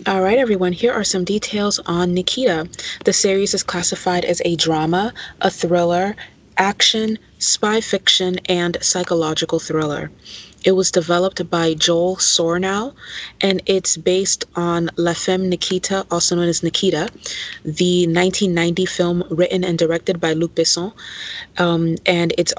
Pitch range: 165-185 Hz